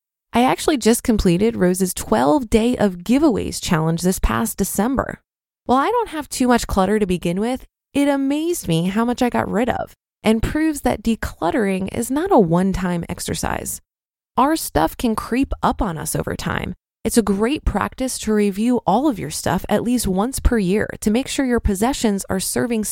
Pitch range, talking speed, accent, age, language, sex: 200-265 Hz, 190 wpm, American, 20-39, English, female